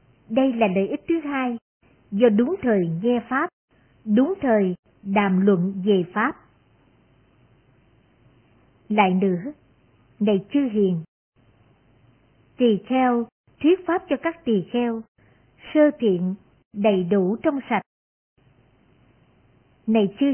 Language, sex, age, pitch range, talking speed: Vietnamese, male, 60-79, 185-260 Hz, 110 wpm